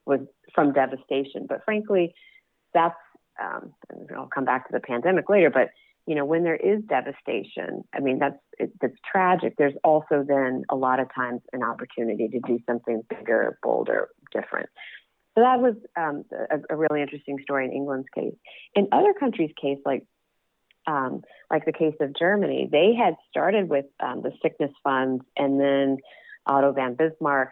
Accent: American